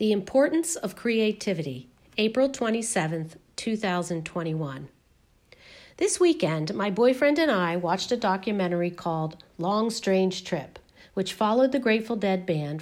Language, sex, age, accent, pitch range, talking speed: English, female, 50-69, American, 170-220 Hz, 120 wpm